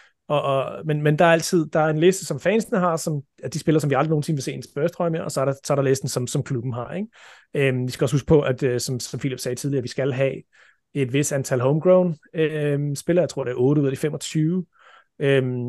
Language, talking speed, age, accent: Danish, 270 wpm, 30-49, native